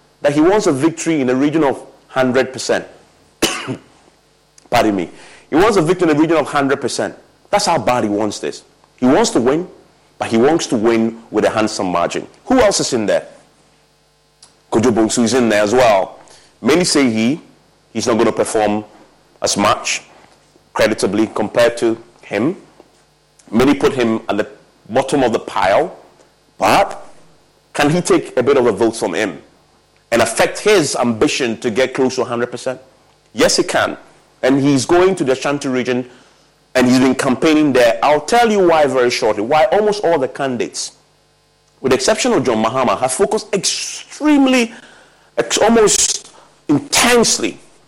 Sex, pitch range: male, 120-180 Hz